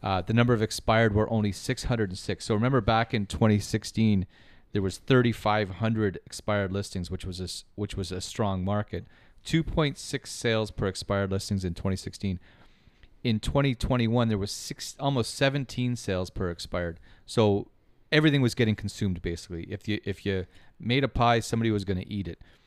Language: English